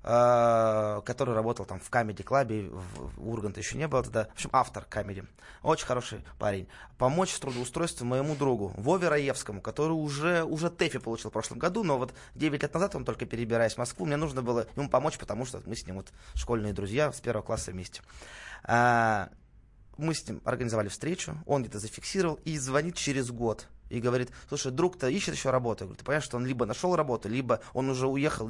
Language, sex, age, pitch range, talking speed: Russian, male, 20-39, 110-145 Hz, 200 wpm